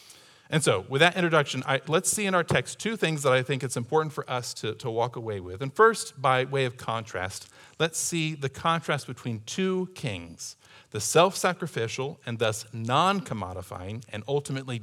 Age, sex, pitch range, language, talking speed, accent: 40-59, male, 115-155 Hz, English, 180 wpm, American